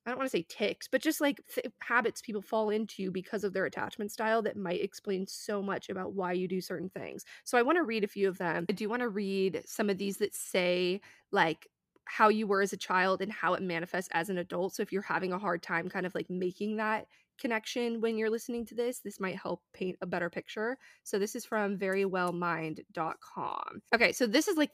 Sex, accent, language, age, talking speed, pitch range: female, American, English, 20-39, 235 wpm, 185-225 Hz